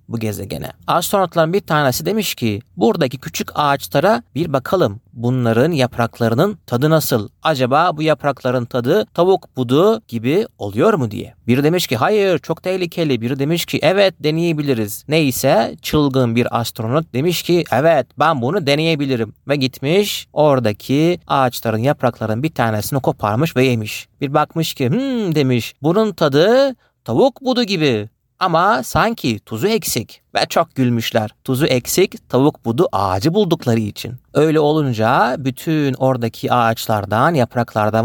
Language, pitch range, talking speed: Turkish, 115-155 Hz, 135 wpm